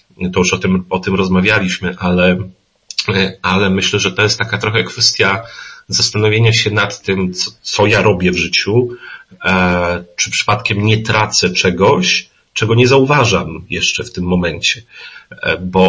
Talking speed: 145 wpm